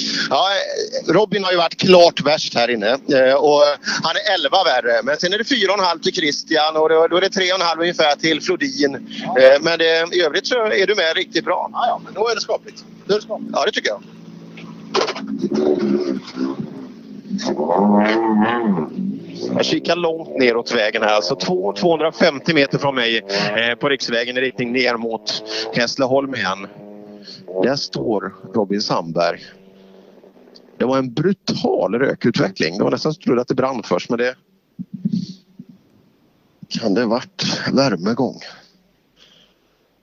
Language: Swedish